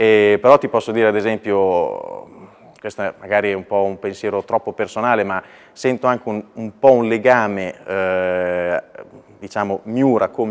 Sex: male